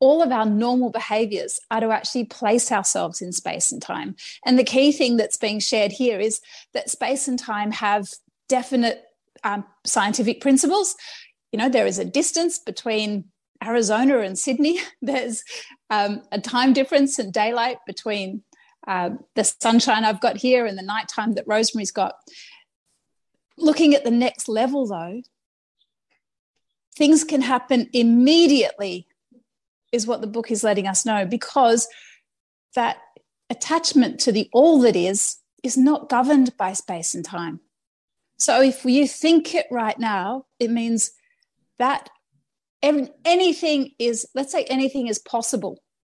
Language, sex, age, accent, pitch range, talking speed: English, female, 30-49, Australian, 215-275 Hz, 145 wpm